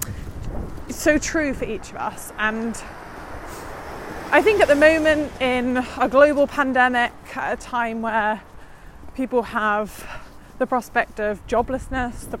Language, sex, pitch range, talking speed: English, female, 215-255 Hz, 125 wpm